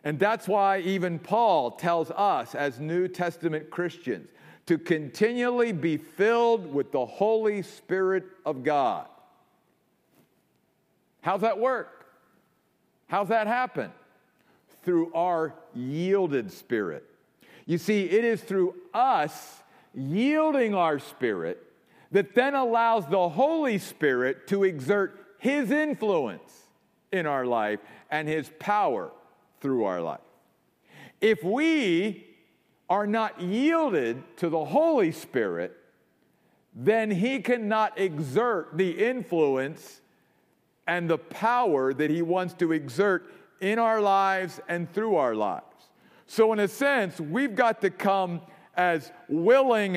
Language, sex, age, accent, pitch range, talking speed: English, male, 50-69, American, 170-245 Hz, 120 wpm